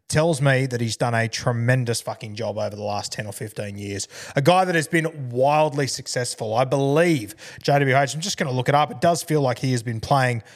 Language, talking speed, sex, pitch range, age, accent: English, 235 wpm, male, 125-155 Hz, 20-39, Australian